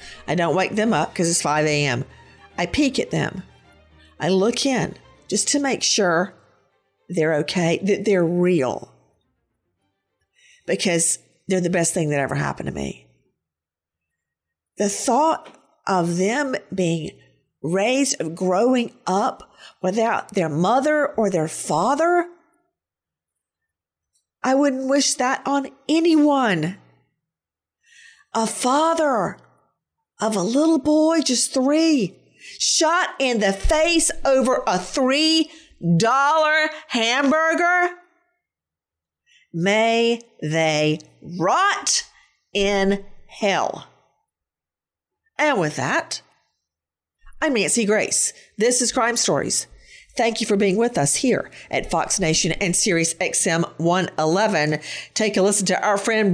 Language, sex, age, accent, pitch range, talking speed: English, female, 50-69, American, 170-285 Hz, 115 wpm